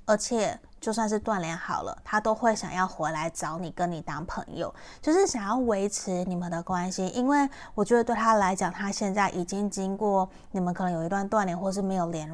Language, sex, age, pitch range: Chinese, female, 20-39, 180-220 Hz